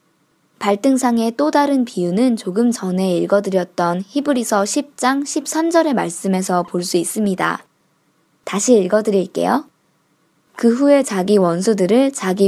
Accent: native